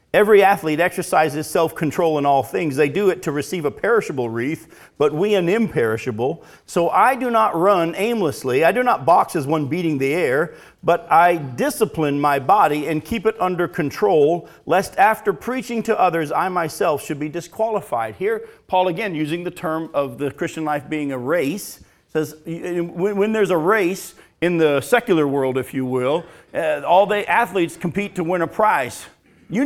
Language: English